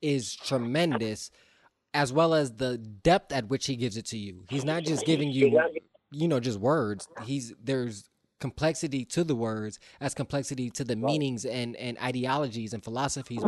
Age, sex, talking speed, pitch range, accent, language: 20-39, male, 175 wpm, 120-145 Hz, American, English